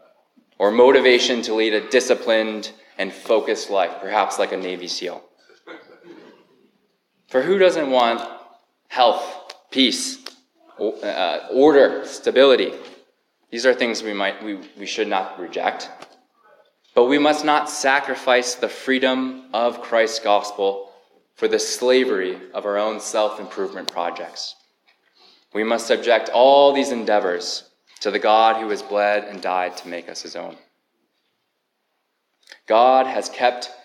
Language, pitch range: English, 105-130 Hz